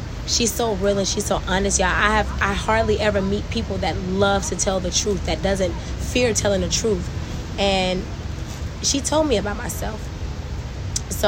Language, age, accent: English, 20-39, American